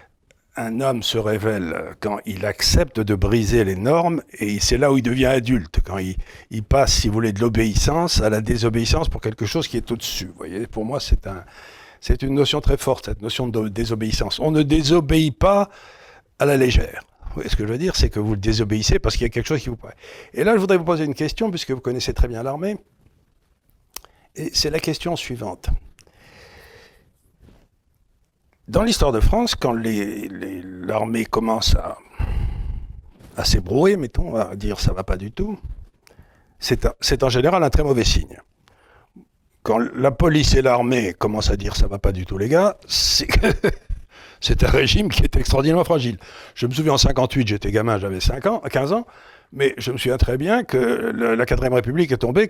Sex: male